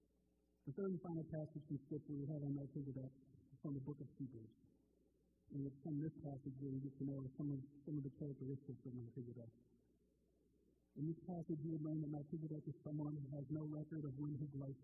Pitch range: 130-155 Hz